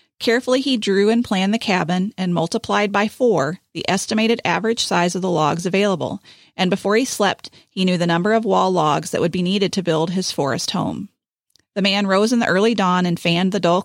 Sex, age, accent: female, 30-49, American